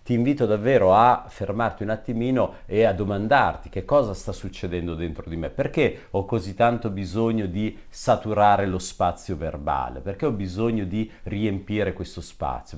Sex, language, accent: male, Italian, native